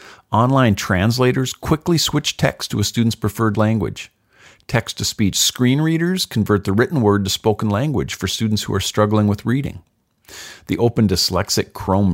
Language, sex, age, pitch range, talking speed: English, male, 50-69, 95-130 Hz, 155 wpm